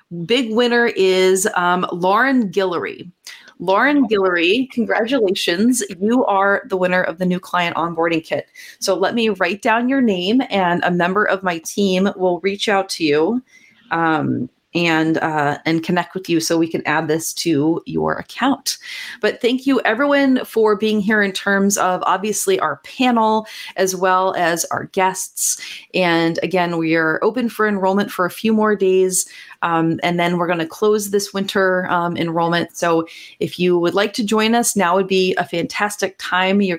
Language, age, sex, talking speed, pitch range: English, 30-49, female, 175 wpm, 175-215 Hz